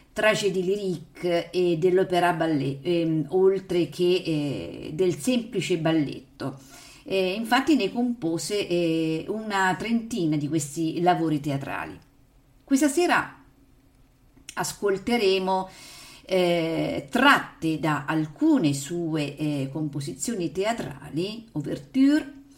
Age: 50-69